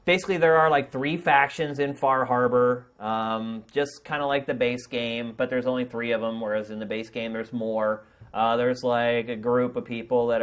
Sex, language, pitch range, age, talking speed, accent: male, English, 120-160 Hz, 30-49, 220 wpm, American